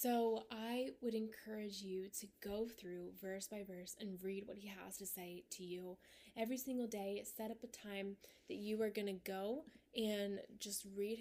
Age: 20-39